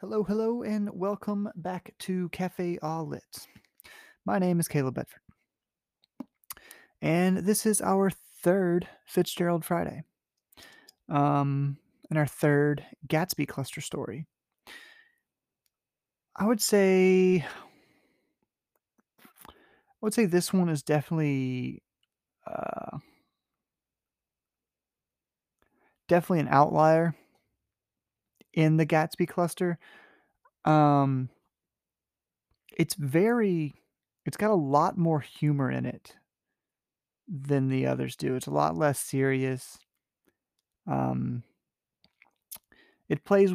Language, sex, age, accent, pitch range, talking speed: English, male, 30-49, American, 130-185 Hz, 95 wpm